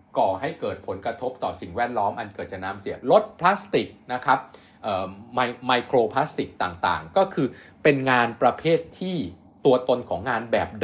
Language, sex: Thai, male